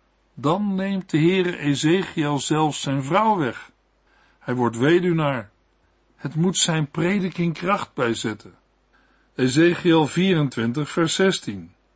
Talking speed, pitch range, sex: 115 wpm, 145-185 Hz, male